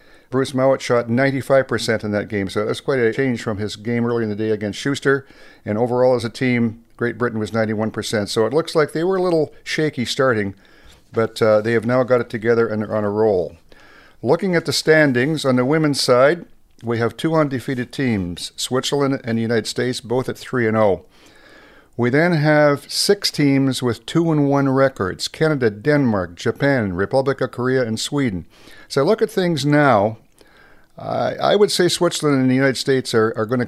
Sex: male